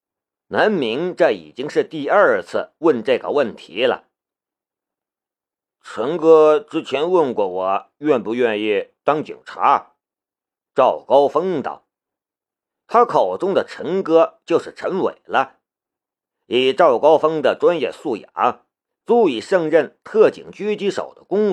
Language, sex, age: Chinese, male, 50-69